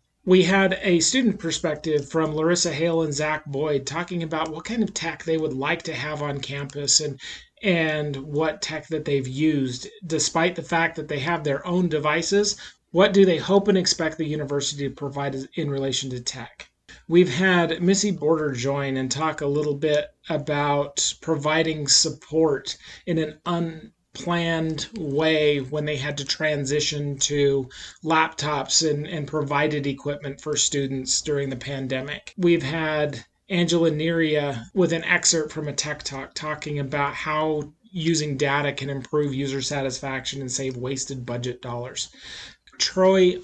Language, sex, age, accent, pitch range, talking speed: English, male, 30-49, American, 140-165 Hz, 155 wpm